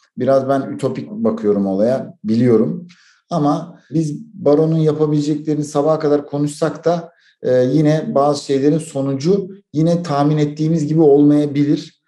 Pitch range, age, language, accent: 145-180 Hz, 50-69, Turkish, native